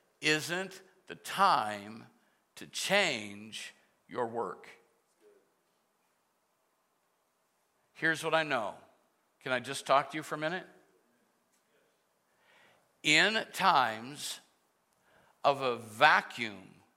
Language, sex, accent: English, male, American